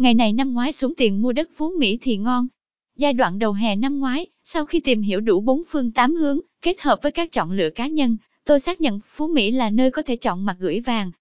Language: Vietnamese